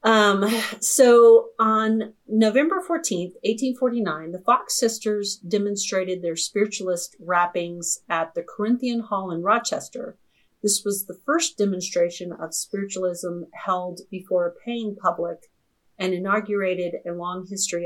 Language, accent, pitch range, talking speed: English, American, 175-215 Hz, 120 wpm